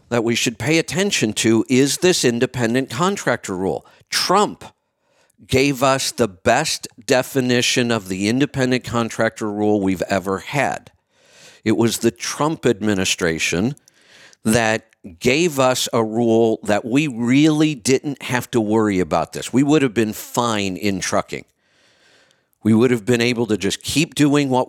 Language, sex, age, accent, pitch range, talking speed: English, male, 50-69, American, 100-125 Hz, 150 wpm